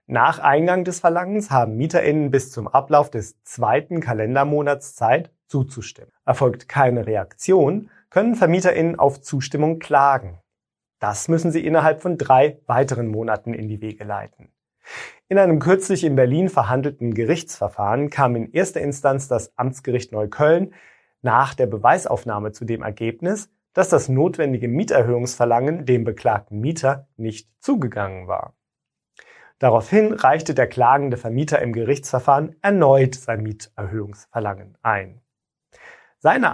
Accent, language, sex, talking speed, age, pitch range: German, German, male, 125 wpm, 30-49, 115-165 Hz